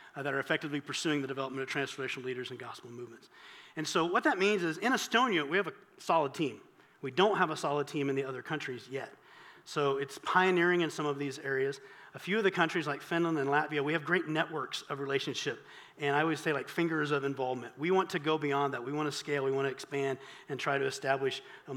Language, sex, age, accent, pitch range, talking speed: English, male, 40-59, American, 135-155 Hz, 240 wpm